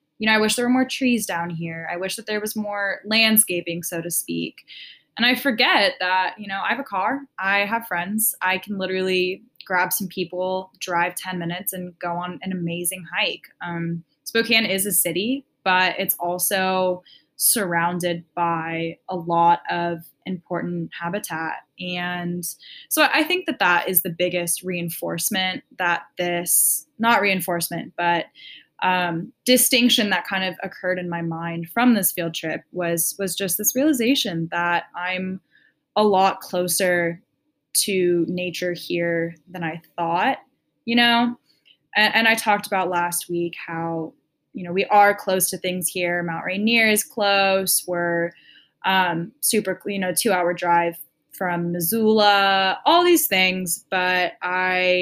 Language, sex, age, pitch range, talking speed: English, female, 10-29, 175-205 Hz, 155 wpm